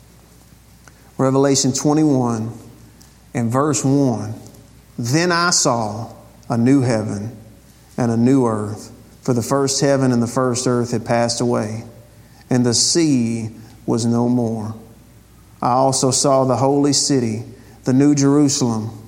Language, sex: English, male